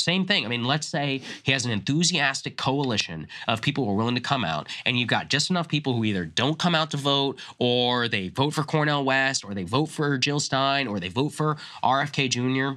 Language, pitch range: English, 110-145 Hz